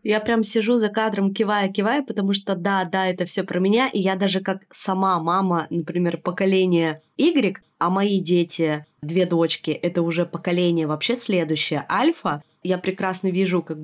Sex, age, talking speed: female, 20-39, 165 wpm